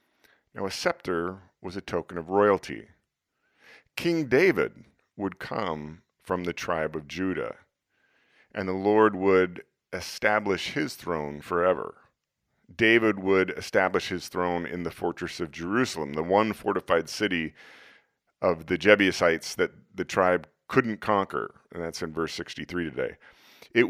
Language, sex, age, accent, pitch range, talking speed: English, male, 40-59, American, 80-105 Hz, 135 wpm